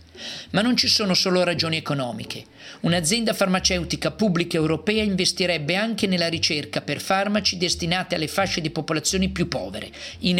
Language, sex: Italian, male